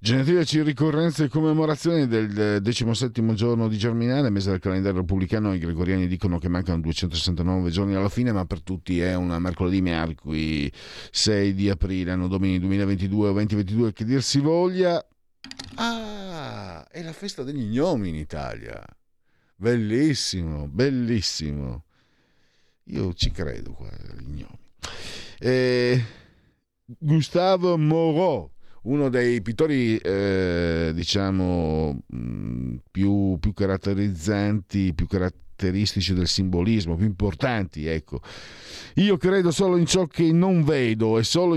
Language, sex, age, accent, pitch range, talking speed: Italian, male, 50-69, native, 85-130 Hz, 120 wpm